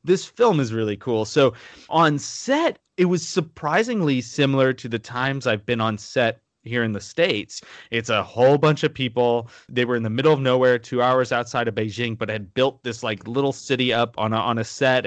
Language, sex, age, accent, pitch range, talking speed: English, male, 30-49, American, 110-135 Hz, 215 wpm